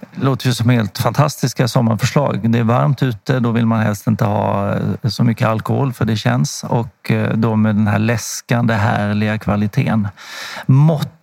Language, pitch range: Swedish, 110-140 Hz